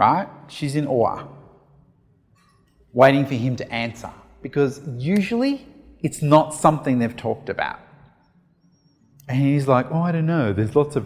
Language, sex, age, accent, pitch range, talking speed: English, male, 30-49, Australian, 140-165 Hz, 145 wpm